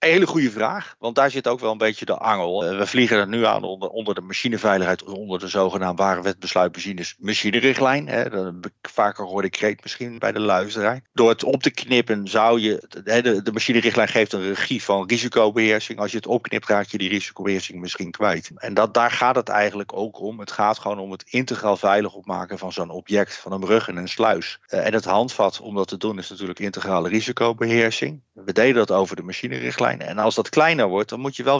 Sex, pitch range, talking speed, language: male, 95-115 Hz, 205 wpm, Dutch